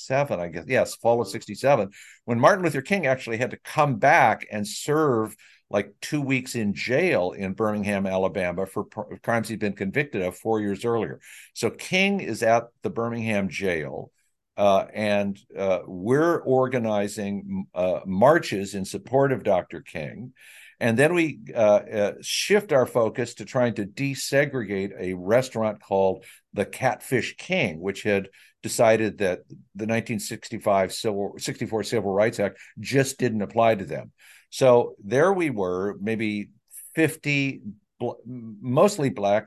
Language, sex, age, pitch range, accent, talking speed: English, male, 60-79, 100-135 Hz, American, 145 wpm